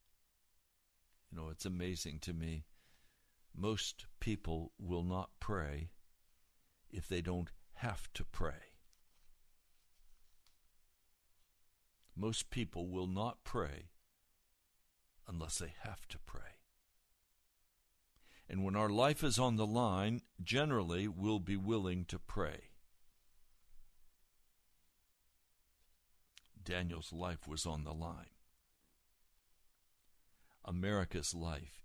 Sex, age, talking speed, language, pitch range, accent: male, 60-79, 90 wpm, English, 80-105 Hz, American